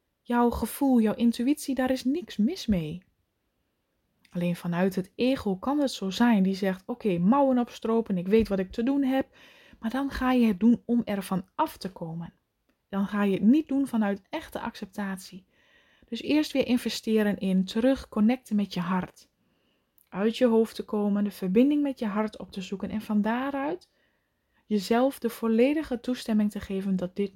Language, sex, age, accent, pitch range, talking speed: Dutch, female, 20-39, Dutch, 195-245 Hz, 180 wpm